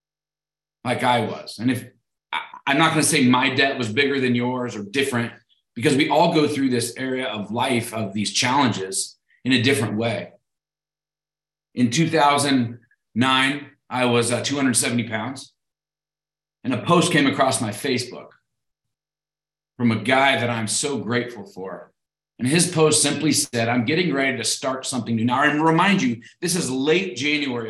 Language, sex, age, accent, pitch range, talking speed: English, male, 40-59, American, 120-155 Hz, 165 wpm